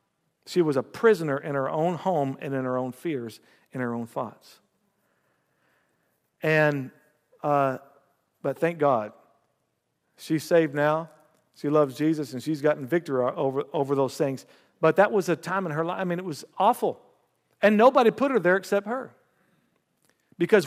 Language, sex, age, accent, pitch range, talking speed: English, male, 50-69, American, 145-195 Hz, 165 wpm